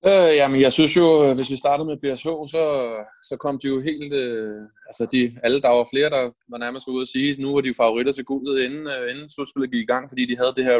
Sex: male